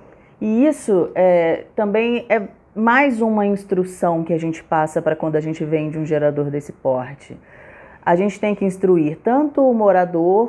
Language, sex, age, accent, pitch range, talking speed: Portuguese, female, 30-49, Brazilian, 175-235 Hz, 170 wpm